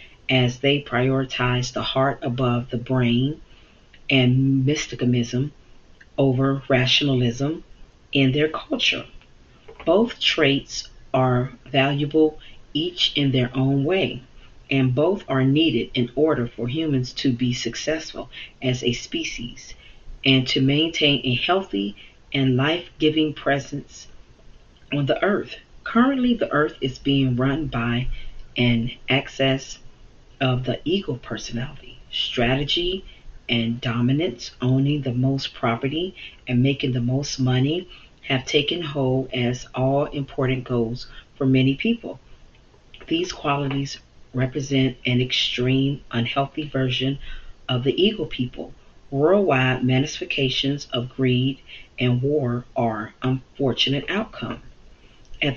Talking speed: 115 wpm